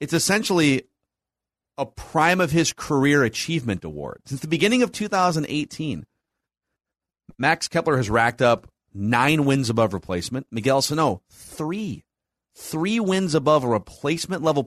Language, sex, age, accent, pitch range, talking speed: English, male, 40-59, American, 105-155 Hz, 125 wpm